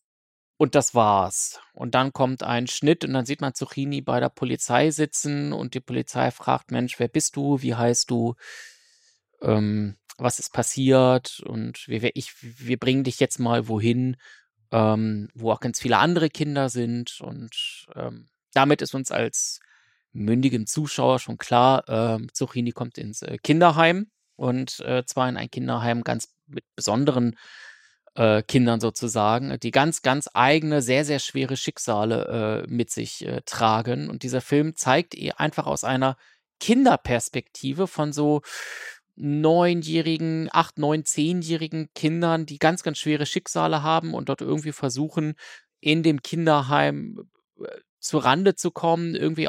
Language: German